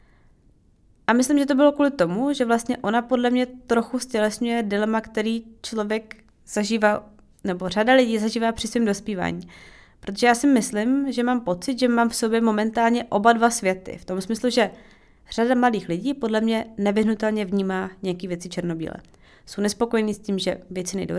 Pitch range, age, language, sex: 195-245 Hz, 20-39, Czech, female